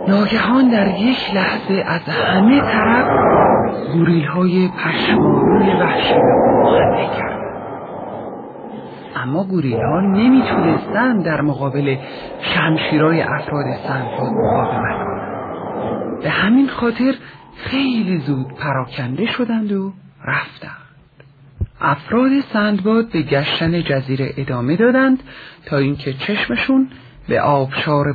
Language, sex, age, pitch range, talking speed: Persian, male, 50-69, 140-220 Hz, 90 wpm